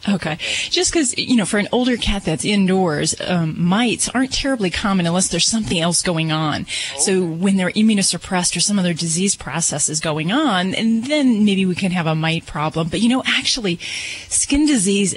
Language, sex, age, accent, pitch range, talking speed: English, female, 30-49, American, 165-205 Hz, 195 wpm